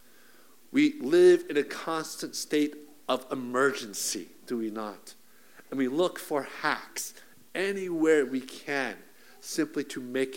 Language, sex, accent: English, male, American